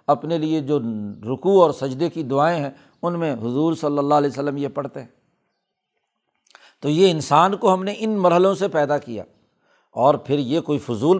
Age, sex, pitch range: 60-79, male, 150-185 Hz